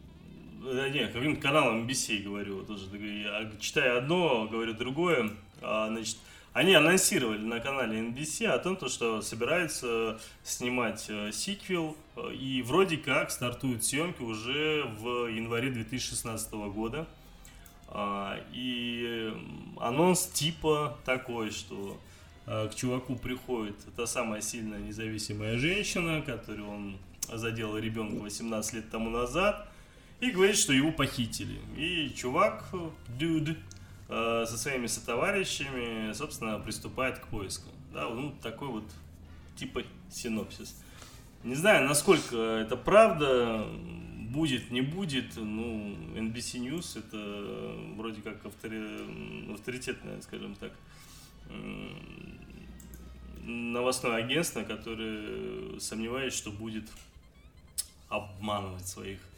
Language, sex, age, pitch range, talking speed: Russian, male, 20-39, 105-135 Hz, 100 wpm